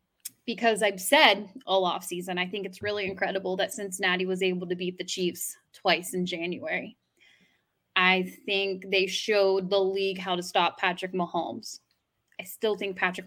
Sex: female